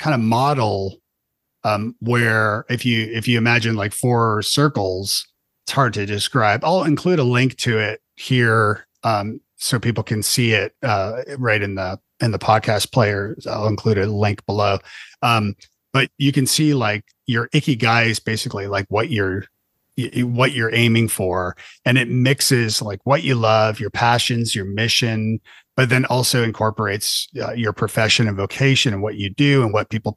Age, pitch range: 40-59, 100-120 Hz